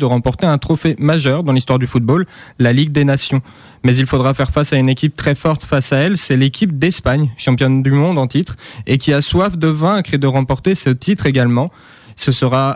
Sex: male